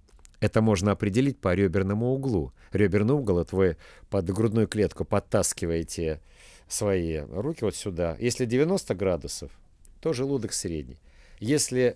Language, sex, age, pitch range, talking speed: Russian, male, 50-69, 85-120 Hz, 130 wpm